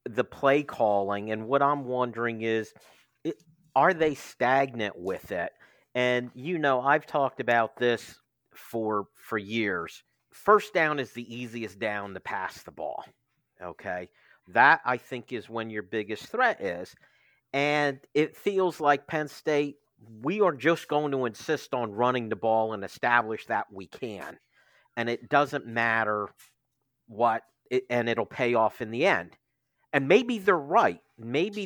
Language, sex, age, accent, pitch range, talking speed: English, male, 50-69, American, 115-145 Hz, 155 wpm